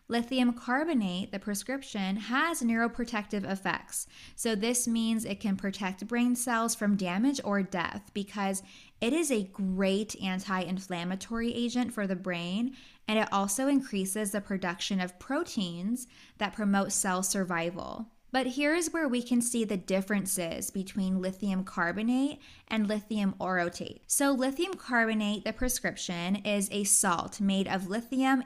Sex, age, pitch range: female, 20-39, 190-235 Hz